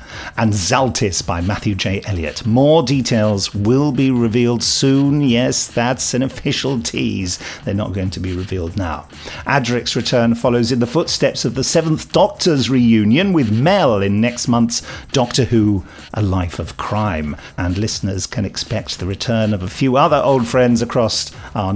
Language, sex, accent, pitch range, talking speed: English, male, British, 100-125 Hz, 165 wpm